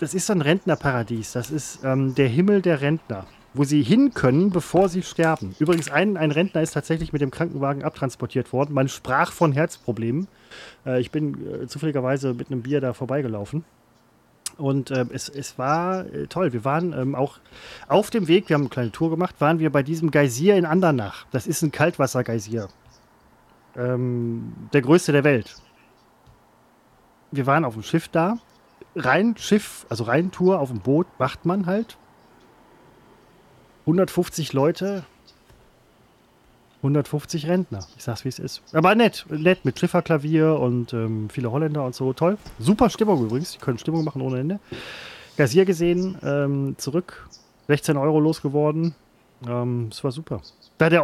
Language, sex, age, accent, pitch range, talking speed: German, male, 30-49, German, 130-170 Hz, 160 wpm